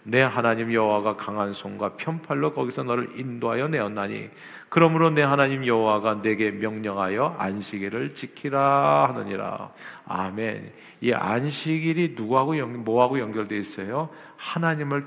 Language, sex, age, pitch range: Korean, male, 50-69, 115-155 Hz